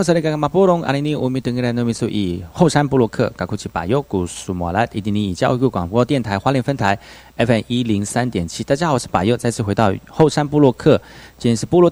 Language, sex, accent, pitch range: Chinese, male, native, 100-140 Hz